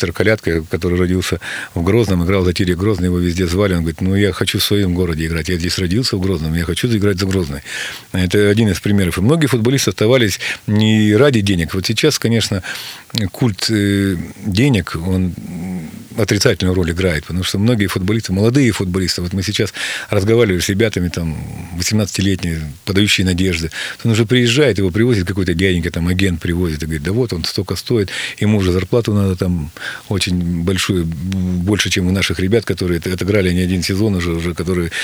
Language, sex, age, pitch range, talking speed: Russian, male, 40-59, 90-110 Hz, 180 wpm